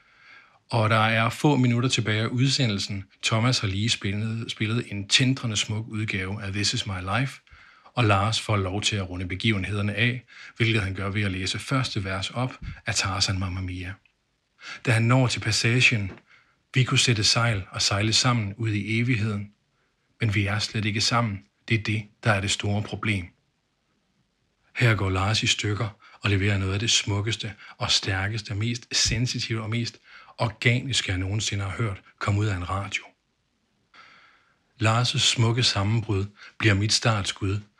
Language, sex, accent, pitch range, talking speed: Danish, male, native, 100-115 Hz, 170 wpm